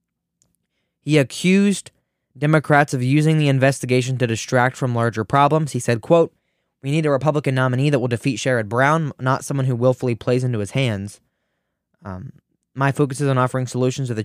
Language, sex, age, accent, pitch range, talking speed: English, male, 20-39, American, 115-140 Hz, 175 wpm